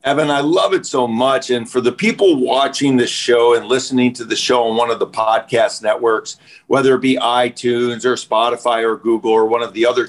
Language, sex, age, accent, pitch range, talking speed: English, male, 50-69, American, 120-150 Hz, 220 wpm